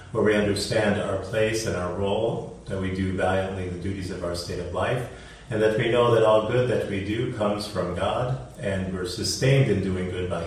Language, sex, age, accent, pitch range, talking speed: English, male, 40-59, American, 90-105 Hz, 225 wpm